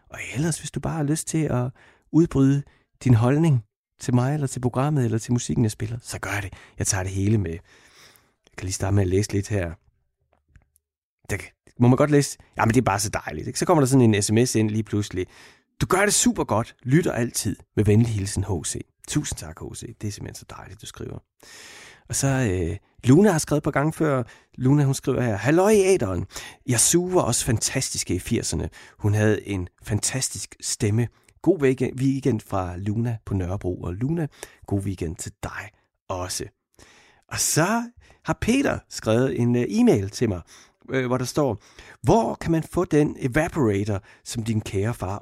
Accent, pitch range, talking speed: native, 100-135 Hz, 190 wpm